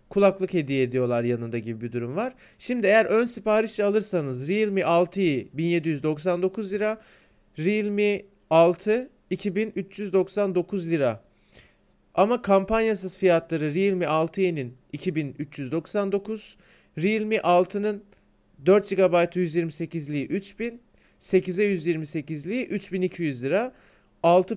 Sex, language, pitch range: male, Turkish, 165-205 Hz